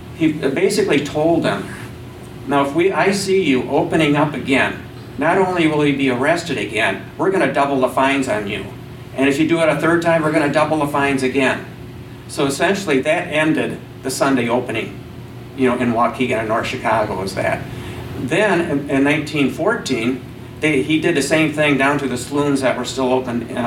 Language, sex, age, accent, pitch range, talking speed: English, male, 50-69, American, 125-150 Hz, 195 wpm